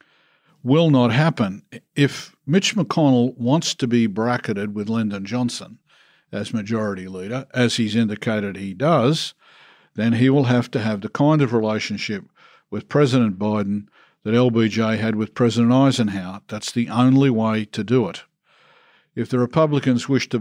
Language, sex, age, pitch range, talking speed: English, male, 50-69, 110-135 Hz, 155 wpm